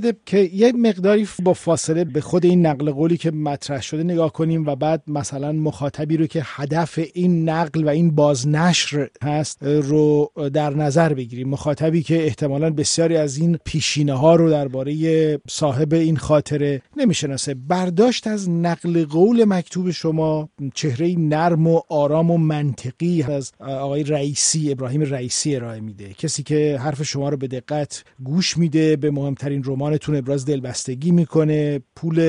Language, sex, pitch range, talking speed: Persian, male, 140-165 Hz, 150 wpm